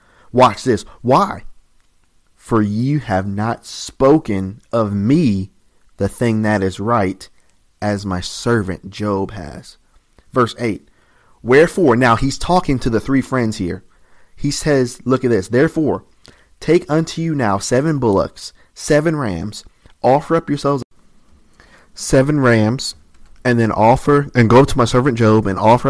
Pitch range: 100-130 Hz